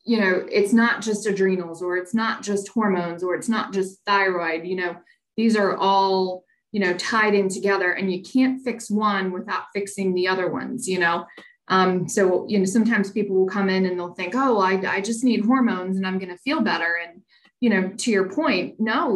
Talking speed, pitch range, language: 215 wpm, 185-220 Hz, English